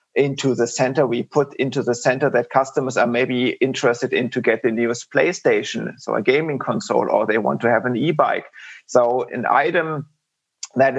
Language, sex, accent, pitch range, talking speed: English, male, German, 125-150 Hz, 185 wpm